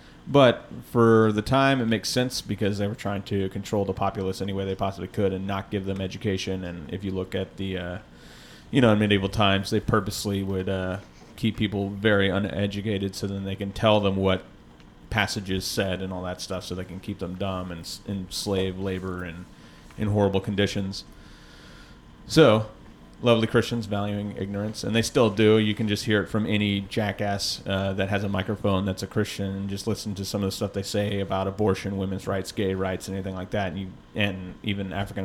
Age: 30-49